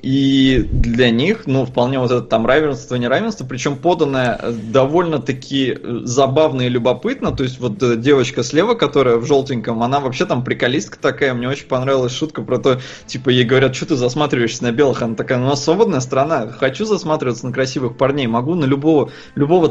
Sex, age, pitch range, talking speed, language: male, 20-39, 120-150 Hz, 175 wpm, Russian